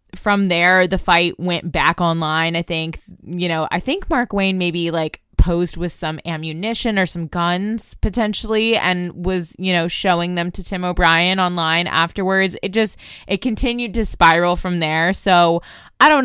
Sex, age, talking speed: female, 20-39, 175 wpm